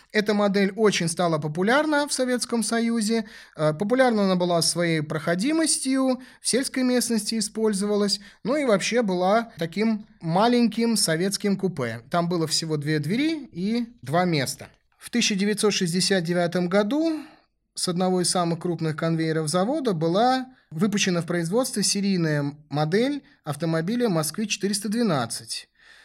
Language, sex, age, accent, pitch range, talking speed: Russian, male, 30-49, native, 165-230 Hz, 120 wpm